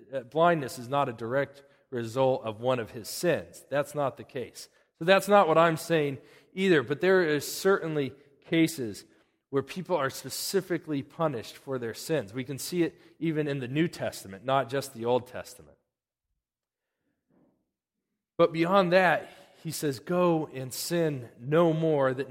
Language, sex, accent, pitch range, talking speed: English, male, American, 130-170 Hz, 160 wpm